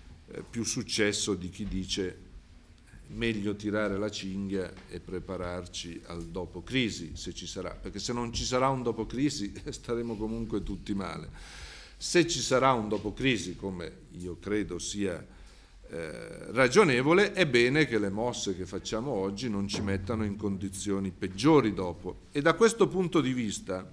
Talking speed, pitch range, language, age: 155 wpm, 90-110 Hz, Italian, 50-69